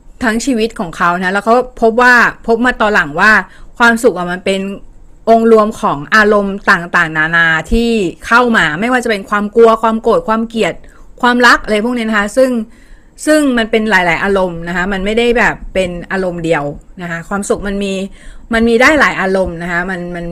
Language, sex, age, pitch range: Thai, female, 30-49, 185-235 Hz